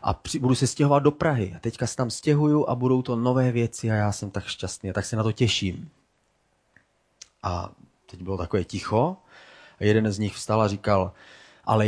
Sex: male